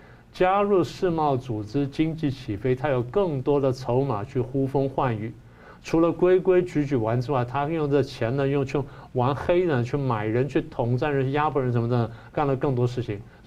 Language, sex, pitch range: Chinese, male, 120-150 Hz